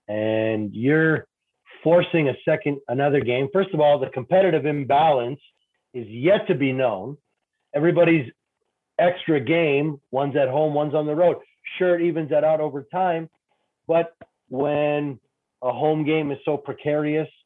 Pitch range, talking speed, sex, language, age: 135-165 Hz, 150 wpm, male, English, 40-59